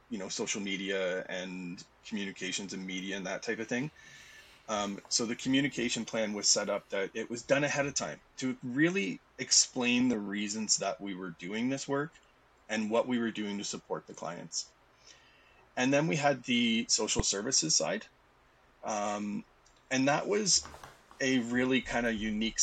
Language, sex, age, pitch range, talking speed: English, male, 30-49, 105-145 Hz, 170 wpm